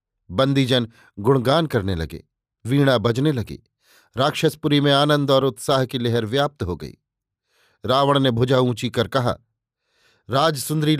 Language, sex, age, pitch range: Hindi, male, 50-69, 120-150 Hz